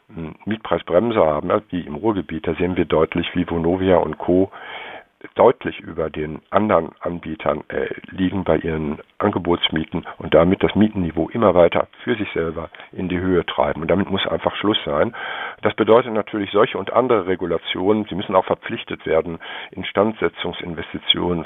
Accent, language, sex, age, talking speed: German, German, male, 50-69, 155 wpm